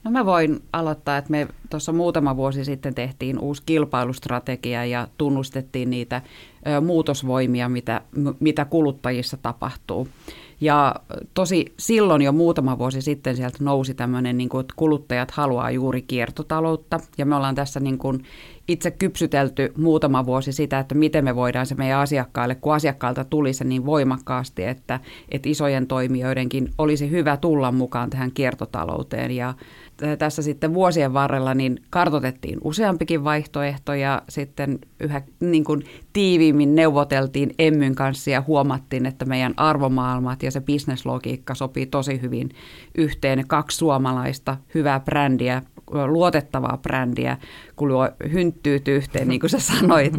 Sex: female